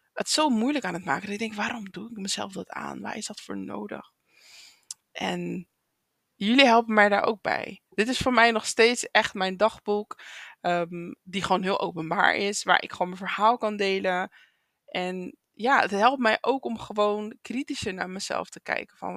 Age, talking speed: 20-39, 195 wpm